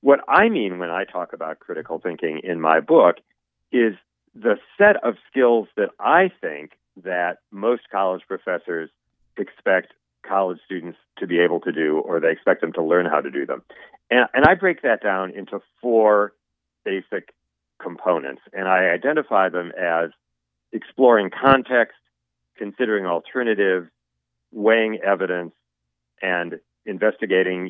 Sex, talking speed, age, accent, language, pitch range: male, 140 wpm, 40-59, American, English, 85-125 Hz